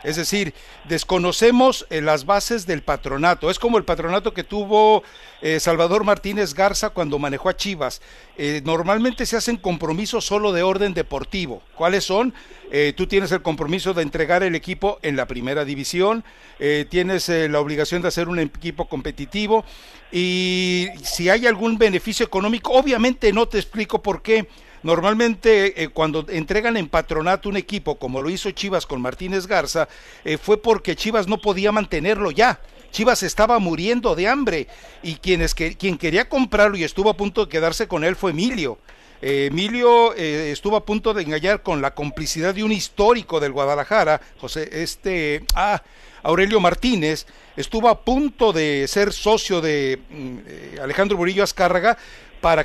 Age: 60-79